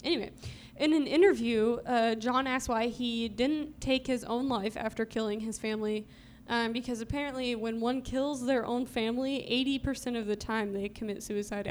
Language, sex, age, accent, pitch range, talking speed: English, female, 10-29, American, 210-250 Hz, 175 wpm